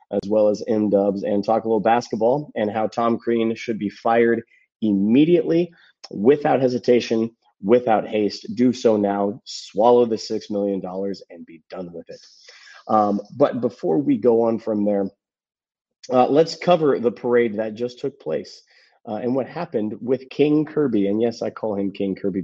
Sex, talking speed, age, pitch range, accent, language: male, 175 wpm, 30-49, 105-120 Hz, American, English